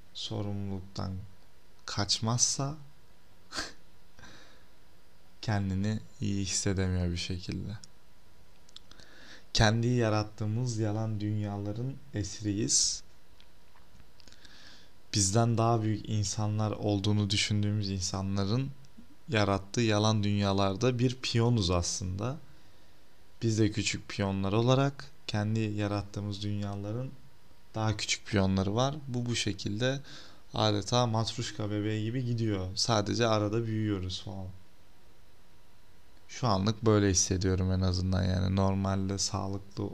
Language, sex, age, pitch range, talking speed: Turkish, male, 30-49, 95-110 Hz, 85 wpm